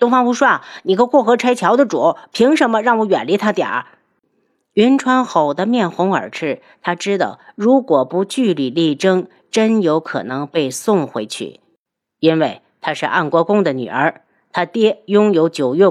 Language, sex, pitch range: Chinese, female, 165-220 Hz